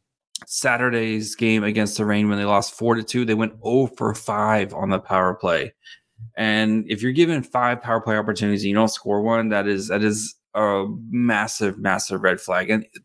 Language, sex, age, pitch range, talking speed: English, male, 30-49, 105-120 Hz, 200 wpm